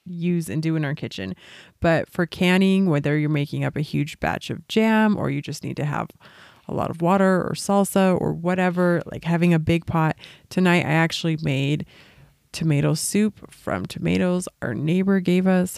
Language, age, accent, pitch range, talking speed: English, 30-49, American, 150-180 Hz, 185 wpm